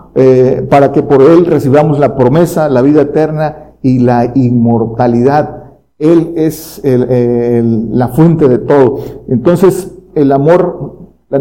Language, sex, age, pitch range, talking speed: Spanish, male, 50-69, 125-155 Hz, 135 wpm